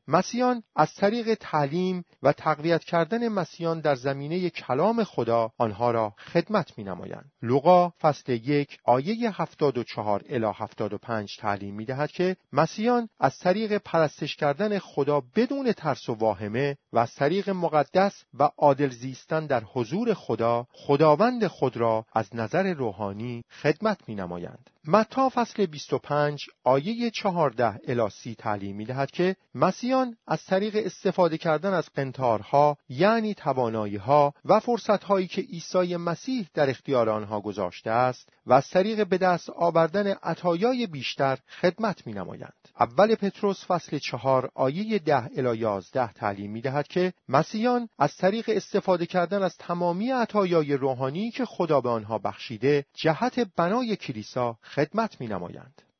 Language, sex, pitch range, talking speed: Persian, male, 125-200 Hz, 135 wpm